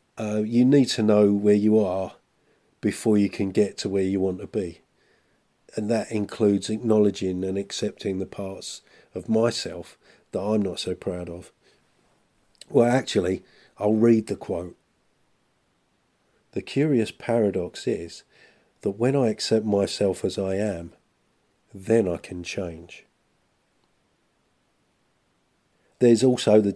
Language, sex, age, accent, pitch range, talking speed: English, male, 40-59, British, 95-115 Hz, 130 wpm